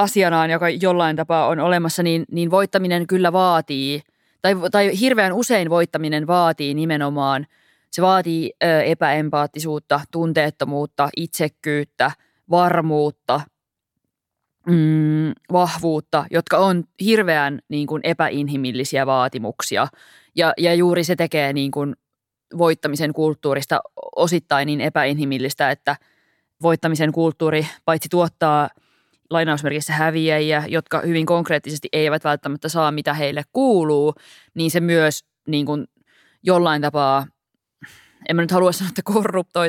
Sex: female